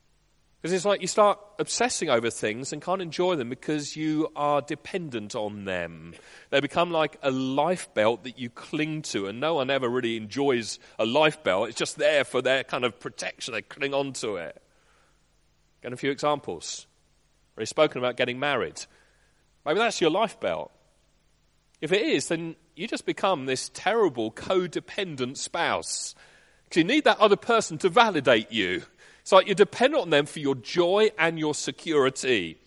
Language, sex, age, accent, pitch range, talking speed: English, male, 40-59, British, 140-195 Hz, 175 wpm